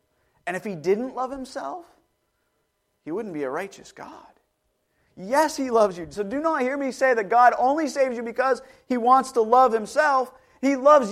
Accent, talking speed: American, 190 wpm